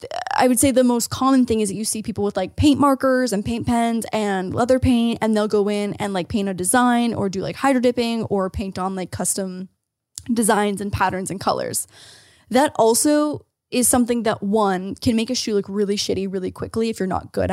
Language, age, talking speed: English, 10-29, 225 wpm